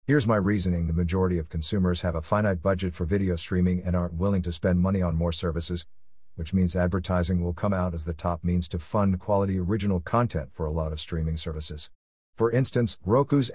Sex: male